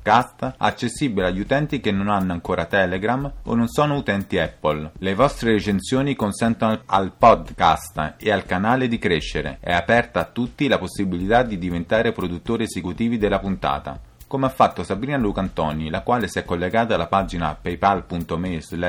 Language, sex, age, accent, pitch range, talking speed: Italian, male, 30-49, native, 85-110 Hz, 160 wpm